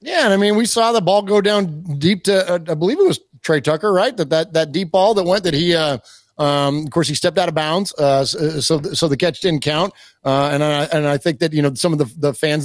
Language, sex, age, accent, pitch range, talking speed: English, male, 30-49, American, 150-195 Hz, 275 wpm